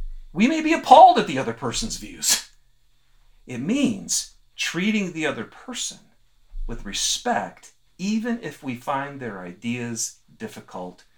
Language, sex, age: English, male, 40-59